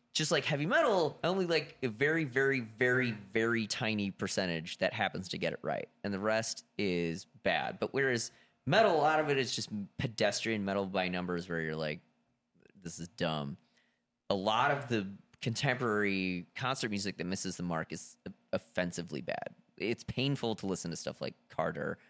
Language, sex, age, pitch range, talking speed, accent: English, male, 30-49, 90-120 Hz, 175 wpm, American